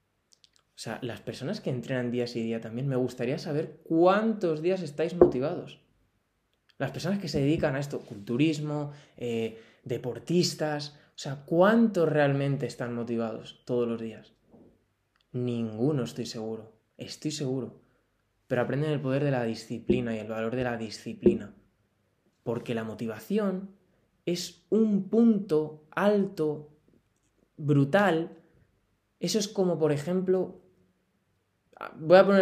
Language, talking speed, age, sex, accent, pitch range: Spanish, 130 wpm, 20-39, male, Spanish, 125-200 Hz